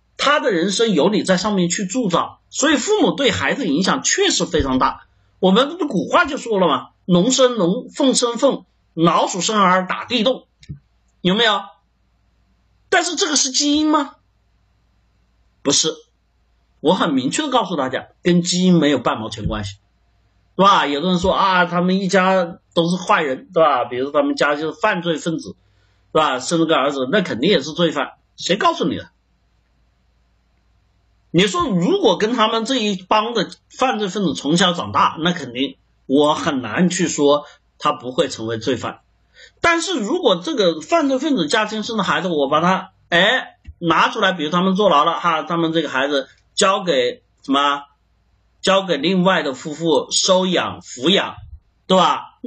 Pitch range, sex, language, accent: 150-225 Hz, male, Chinese, native